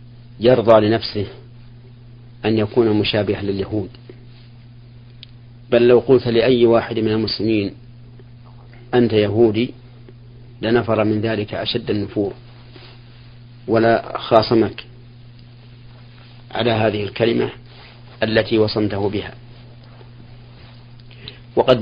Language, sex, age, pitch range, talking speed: Arabic, male, 50-69, 110-120 Hz, 80 wpm